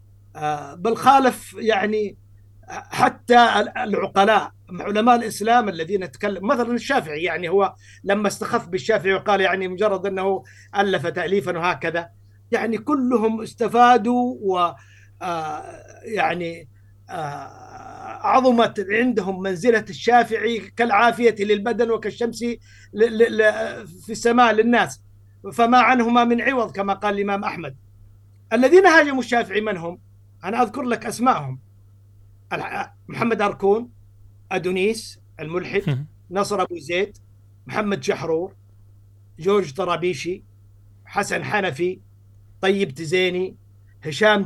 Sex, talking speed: male, 95 wpm